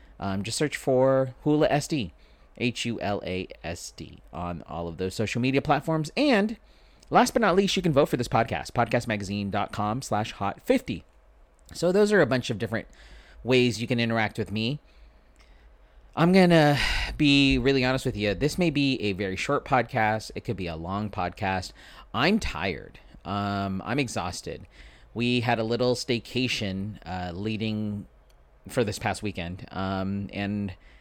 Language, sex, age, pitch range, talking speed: English, male, 30-49, 95-125 Hz, 155 wpm